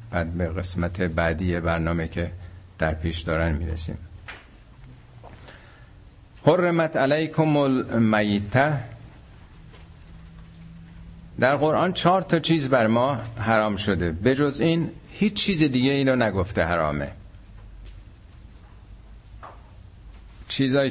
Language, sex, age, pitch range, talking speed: Persian, male, 60-79, 90-135 Hz, 90 wpm